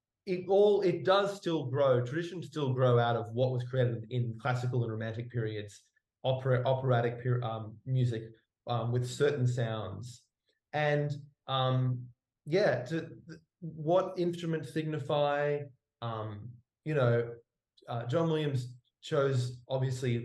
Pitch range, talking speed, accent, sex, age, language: 120-145 Hz, 125 wpm, Australian, male, 20-39, English